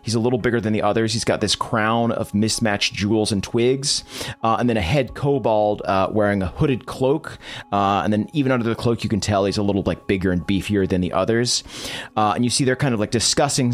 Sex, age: male, 30-49